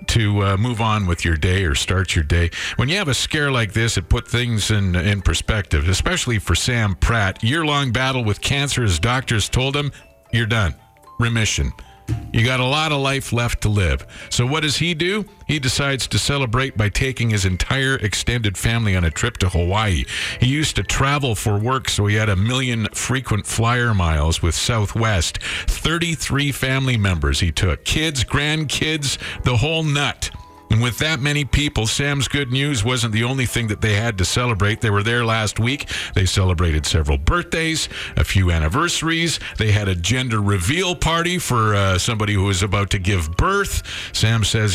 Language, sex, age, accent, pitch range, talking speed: English, male, 50-69, American, 90-130 Hz, 190 wpm